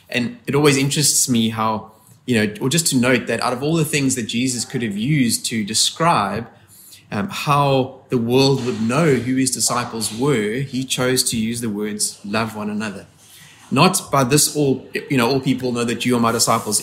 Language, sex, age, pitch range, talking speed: English, male, 20-39, 110-135 Hz, 205 wpm